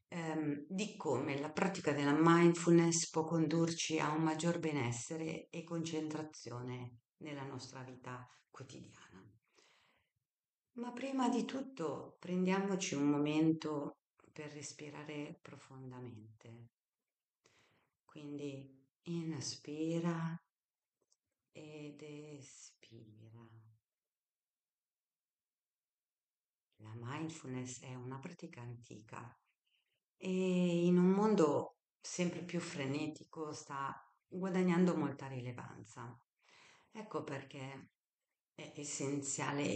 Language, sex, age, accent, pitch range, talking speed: Italian, female, 50-69, native, 135-165 Hz, 80 wpm